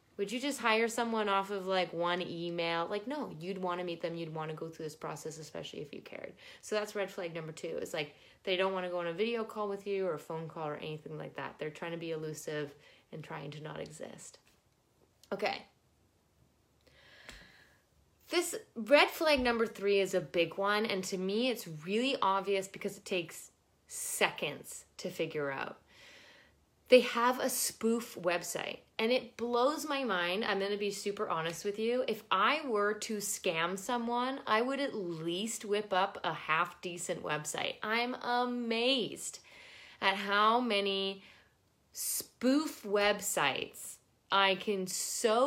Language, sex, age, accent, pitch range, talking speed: English, female, 20-39, American, 175-235 Hz, 175 wpm